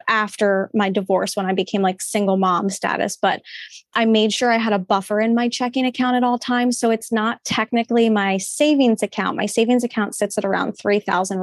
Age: 20-39